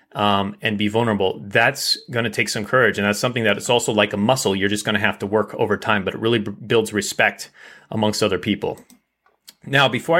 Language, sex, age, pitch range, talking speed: English, male, 30-49, 110-145 Hz, 225 wpm